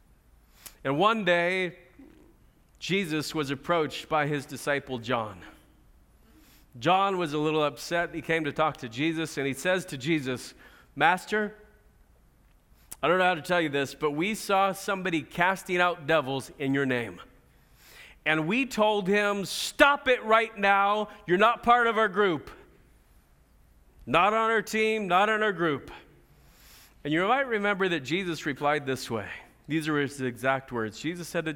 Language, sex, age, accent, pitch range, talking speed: English, male, 40-59, American, 130-205 Hz, 160 wpm